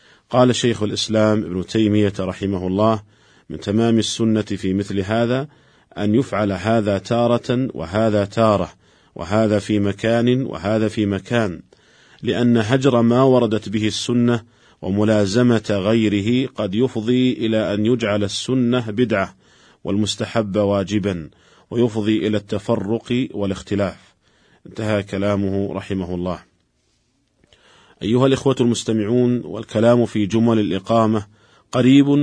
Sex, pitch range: male, 100-115 Hz